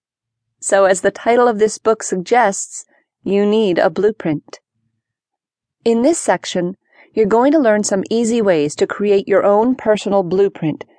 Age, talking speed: 40-59, 155 wpm